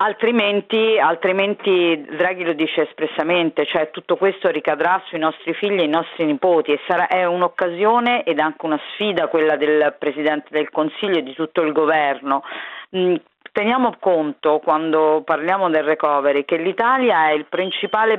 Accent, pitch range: native, 155-190 Hz